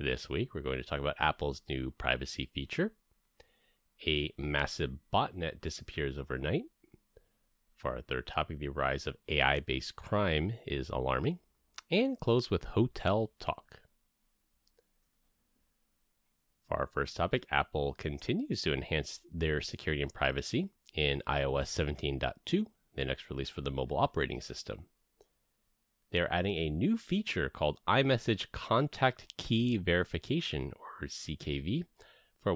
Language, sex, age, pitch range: English, male, 30-49, 70-110 Hz